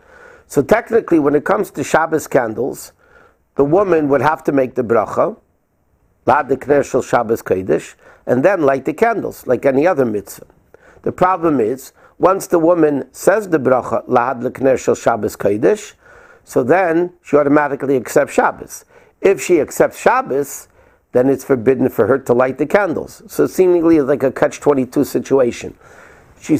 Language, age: English, 50-69